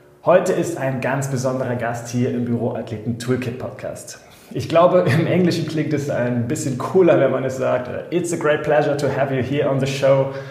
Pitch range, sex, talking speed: 125-155 Hz, male, 205 wpm